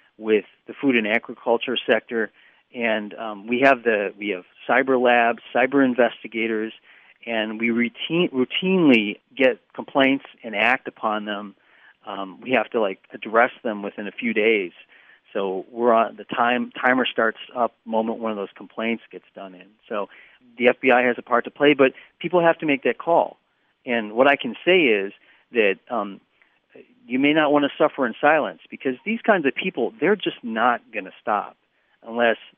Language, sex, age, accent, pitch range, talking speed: English, male, 40-59, American, 110-135 Hz, 180 wpm